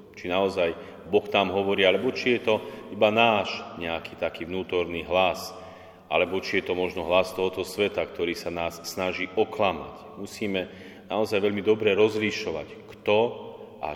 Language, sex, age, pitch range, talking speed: Slovak, male, 30-49, 95-110 Hz, 150 wpm